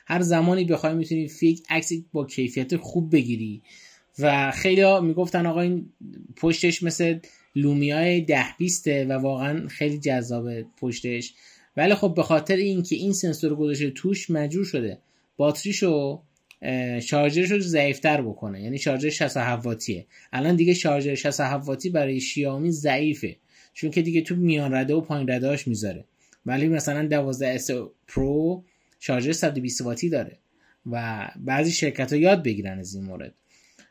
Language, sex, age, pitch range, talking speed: Persian, male, 20-39, 130-170 Hz, 140 wpm